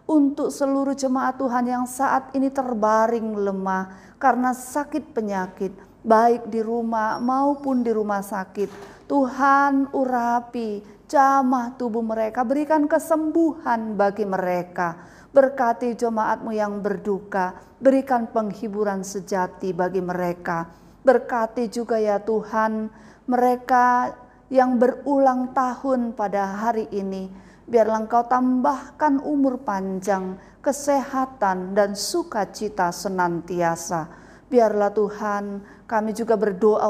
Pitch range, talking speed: 200-250 Hz, 100 wpm